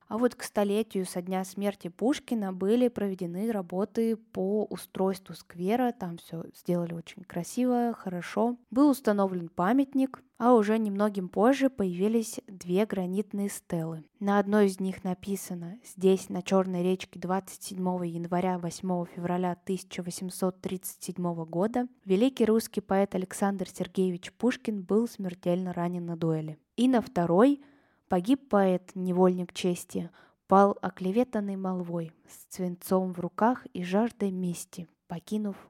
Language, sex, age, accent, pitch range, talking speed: Russian, female, 20-39, native, 180-225 Hz, 125 wpm